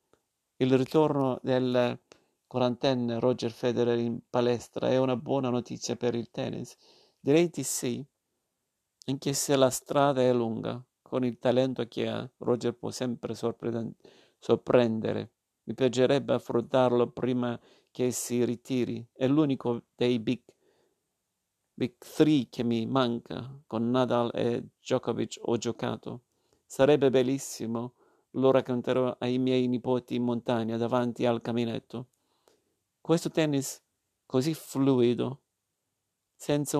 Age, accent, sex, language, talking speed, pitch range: 50-69, native, male, Italian, 115 wpm, 120-130 Hz